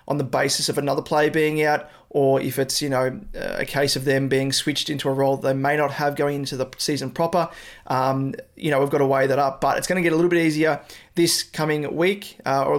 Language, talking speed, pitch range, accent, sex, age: English, 255 wpm, 135-160 Hz, Australian, male, 20-39